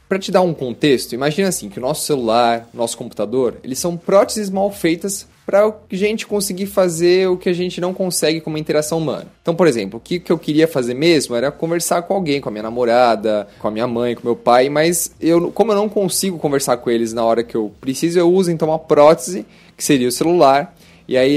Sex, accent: male, Brazilian